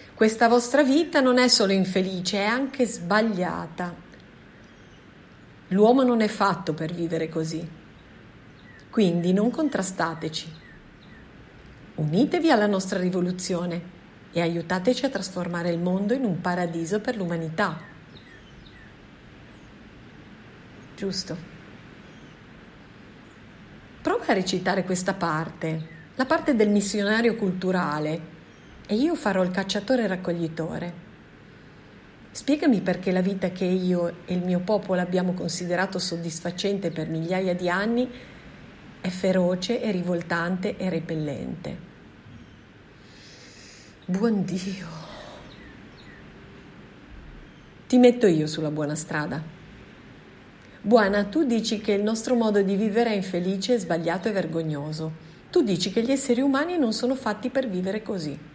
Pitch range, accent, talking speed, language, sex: 170-220 Hz, native, 110 wpm, Italian, female